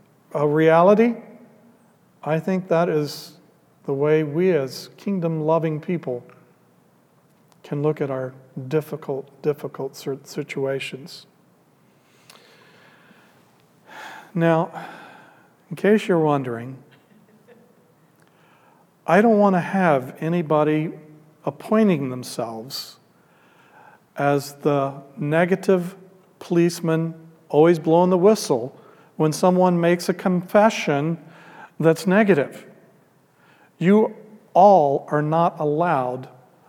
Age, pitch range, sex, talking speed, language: 50-69, 150-190 Hz, male, 85 wpm, English